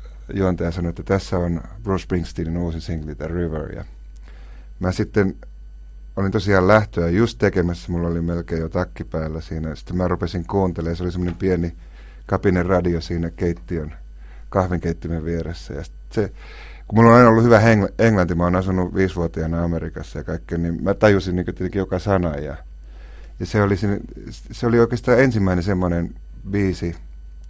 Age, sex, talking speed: 30-49, male, 160 wpm